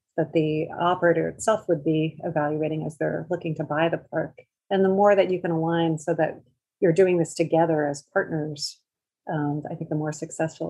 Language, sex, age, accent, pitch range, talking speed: English, female, 30-49, American, 155-180 Hz, 195 wpm